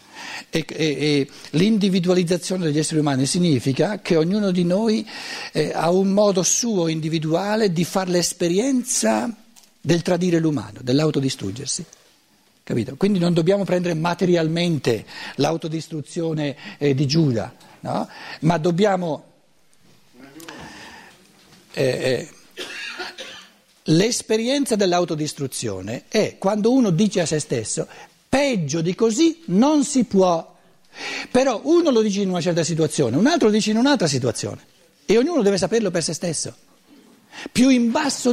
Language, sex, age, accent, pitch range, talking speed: Italian, male, 60-79, native, 160-220 Hz, 125 wpm